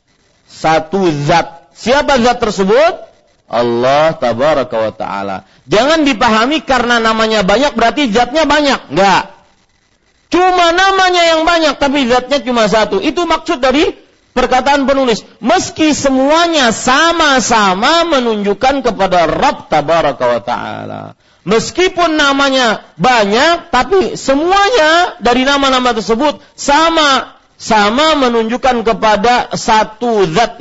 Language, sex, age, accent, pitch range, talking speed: English, male, 40-59, Indonesian, 175-275 Hz, 105 wpm